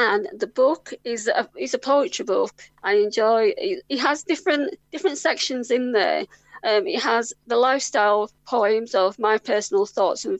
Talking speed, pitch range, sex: 180 wpm, 215-280 Hz, female